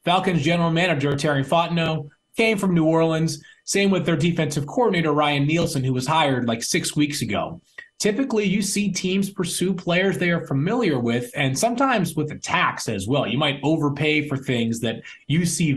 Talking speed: 185 wpm